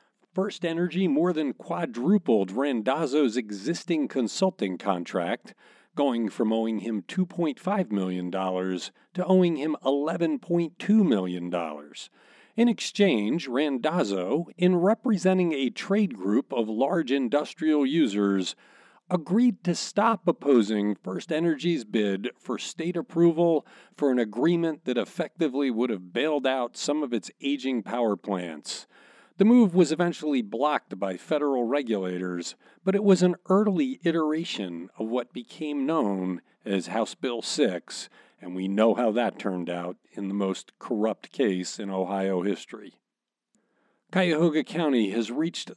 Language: English